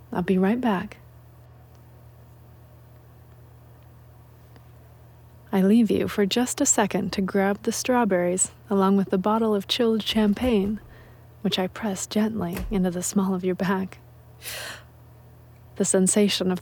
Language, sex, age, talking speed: English, female, 30-49, 125 wpm